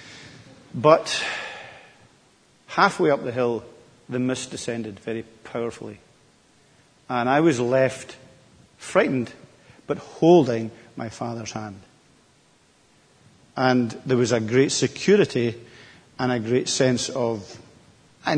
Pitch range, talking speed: 115-140 Hz, 105 wpm